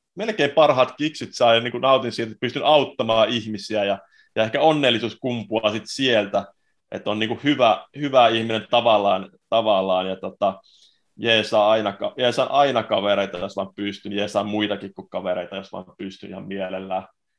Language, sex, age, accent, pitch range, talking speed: Finnish, male, 20-39, native, 105-130 Hz, 160 wpm